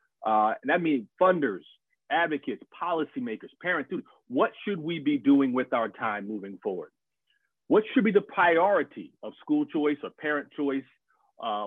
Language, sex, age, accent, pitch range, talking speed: English, male, 30-49, American, 135-210 Hz, 155 wpm